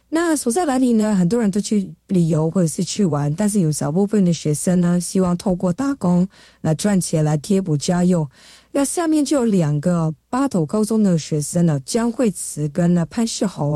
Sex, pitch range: female, 170-230 Hz